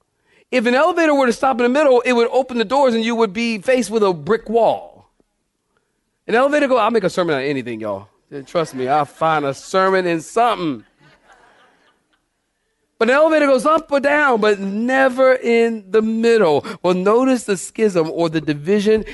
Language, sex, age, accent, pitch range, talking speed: English, male, 40-59, American, 150-200 Hz, 190 wpm